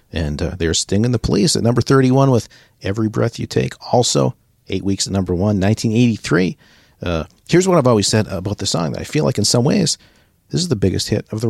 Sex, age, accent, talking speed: male, 40-59, American, 230 wpm